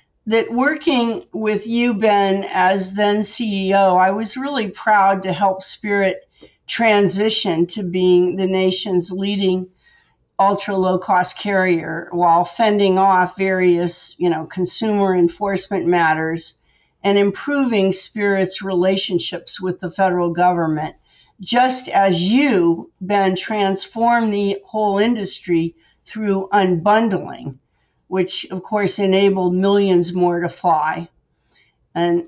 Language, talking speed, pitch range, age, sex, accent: English, 115 wpm, 180-205 Hz, 50-69, female, American